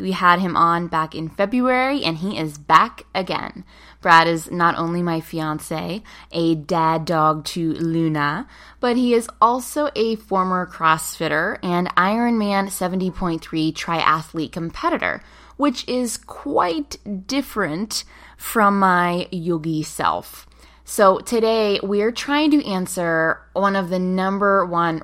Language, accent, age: English, American, 20-39